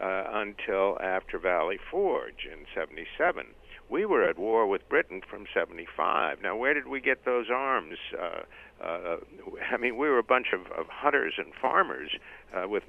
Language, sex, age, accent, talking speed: English, male, 60-79, American, 170 wpm